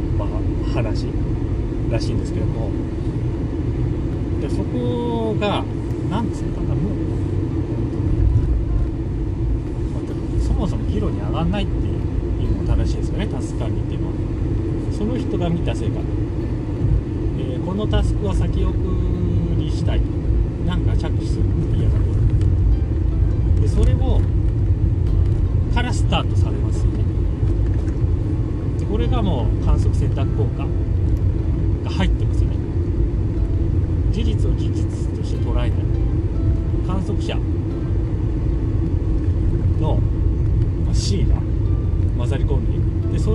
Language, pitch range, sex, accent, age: Japanese, 95-110 Hz, male, native, 40-59